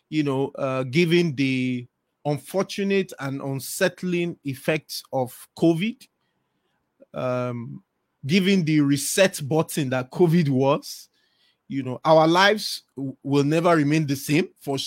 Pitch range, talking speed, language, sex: 135-170 Hz, 115 wpm, English, male